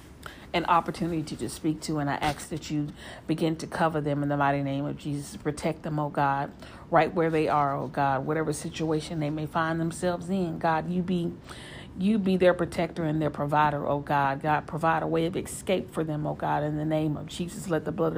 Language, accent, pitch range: English, American, 150-175 Hz